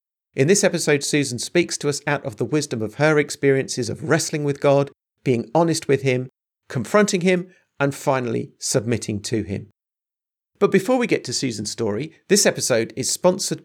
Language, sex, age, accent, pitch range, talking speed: English, male, 50-69, British, 120-155 Hz, 175 wpm